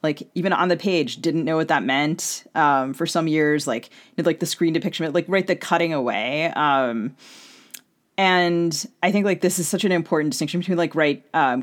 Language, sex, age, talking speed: English, female, 30-49, 200 wpm